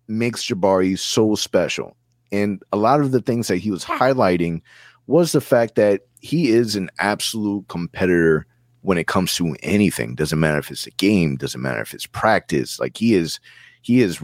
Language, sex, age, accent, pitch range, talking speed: English, male, 30-49, American, 90-120 Hz, 185 wpm